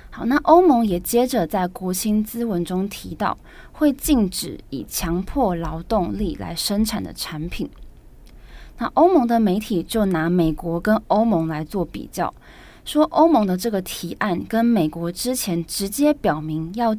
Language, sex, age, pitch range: Chinese, female, 20-39, 175-240 Hz